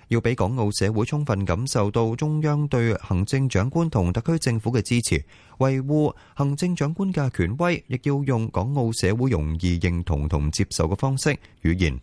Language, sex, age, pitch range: Chinese, male, 30-49, 90-135 Hz